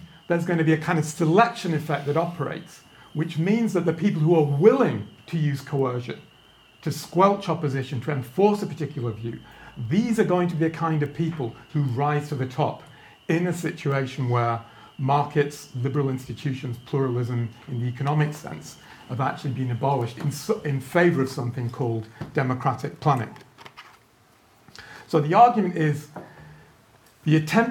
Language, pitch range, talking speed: English, 130-170 Hz, 160 wpm